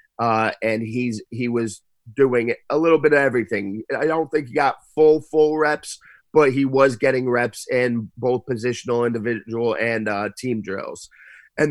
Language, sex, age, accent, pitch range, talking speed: English, male, 30-49, American, 115-135 Hz, 170 wpm